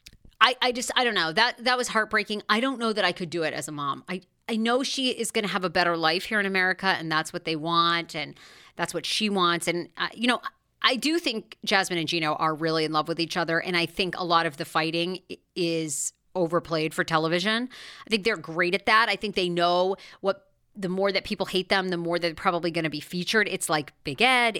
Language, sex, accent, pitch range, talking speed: English, female, American, 160-205 Hz, 255 wpm